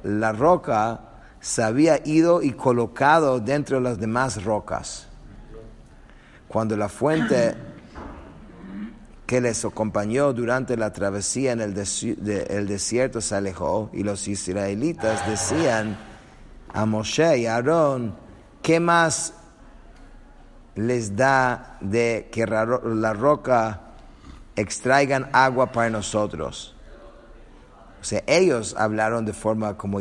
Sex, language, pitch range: male, English, 105-130 Hz